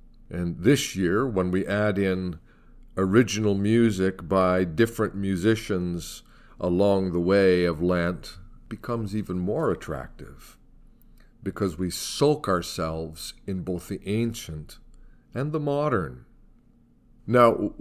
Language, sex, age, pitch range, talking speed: English, male, 50-69, 85-105 Hz, 115 wpm